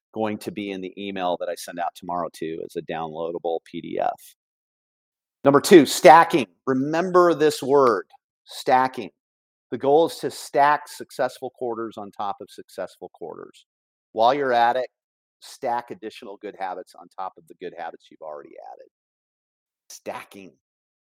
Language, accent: English, American